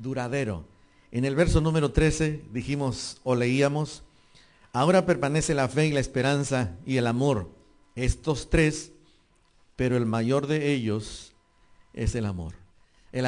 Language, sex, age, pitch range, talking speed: English, male, 50-69, 110-150 Hz, 135 wpm